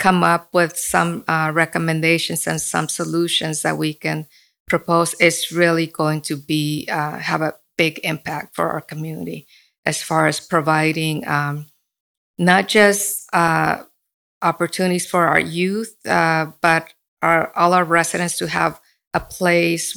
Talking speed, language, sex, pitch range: 140 wpm, English, female, 155-170 Hz